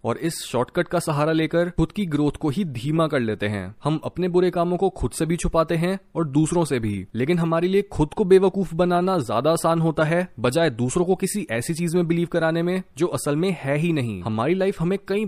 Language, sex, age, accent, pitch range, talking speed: Hindi, male, 20-39, native, 135-180 Hz, 235 wpm